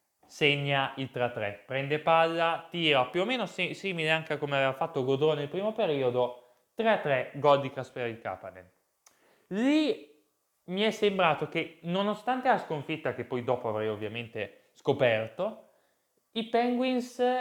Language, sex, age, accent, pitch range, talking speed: Italian, male, 20-39, native, 115-170 Hz, 140 wpm